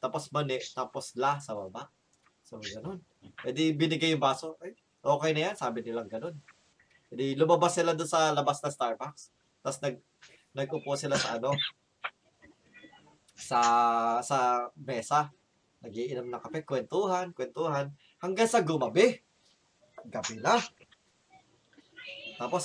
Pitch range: 125-170 Hz